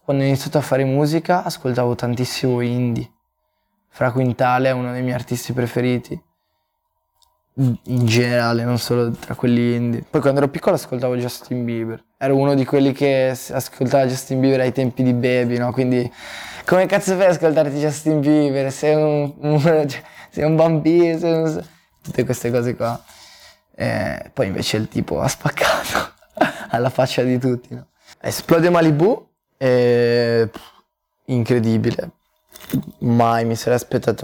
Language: Italian